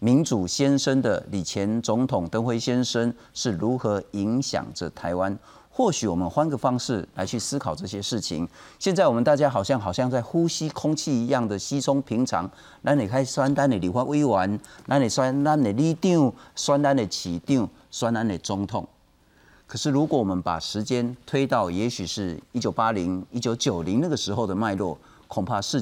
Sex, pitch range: male, 105-140 Hz